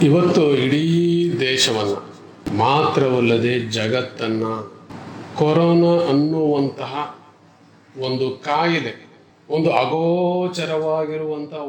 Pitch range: 135-175 Hz